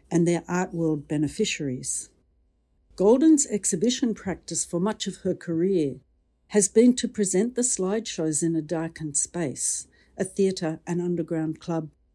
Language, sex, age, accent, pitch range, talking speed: English, female, 60-79, Australian, 155-210 Hz, 140 wpm